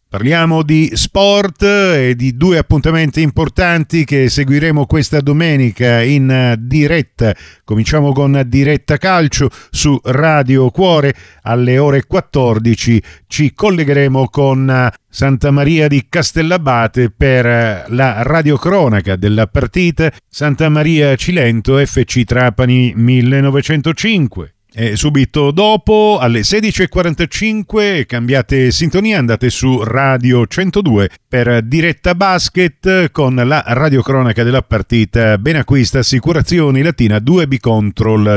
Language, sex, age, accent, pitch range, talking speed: Italian, male, 50-69, native, 110-150 Hz, 105 wpm